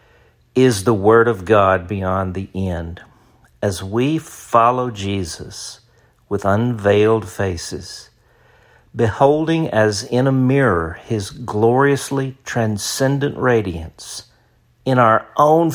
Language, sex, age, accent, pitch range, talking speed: English, male, 50-69, American, 100-125 Hz, 105 wpm